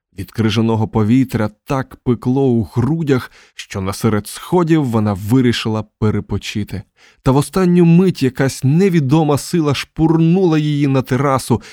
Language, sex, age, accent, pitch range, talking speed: Ukrainian, male, 20-39, native, 105-140 Hz, 130 wpm